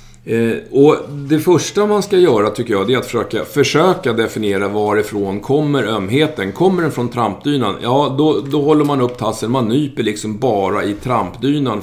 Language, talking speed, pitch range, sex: Swedish, 180 wpm, 105-140 Hz, male